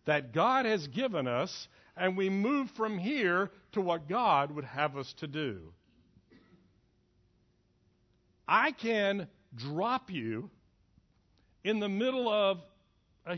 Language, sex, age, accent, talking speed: English, male, 60-79, American, 120 wpm